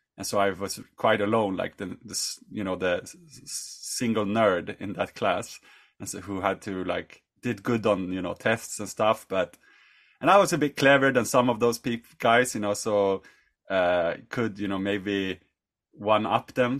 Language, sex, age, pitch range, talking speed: English, male, 30-49, 105-140 Hz, 195 wpm